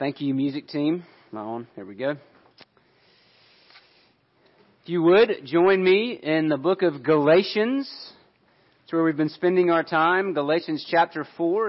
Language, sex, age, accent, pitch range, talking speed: English, male, 40-59, American, 150-180 Hz, 150 wpm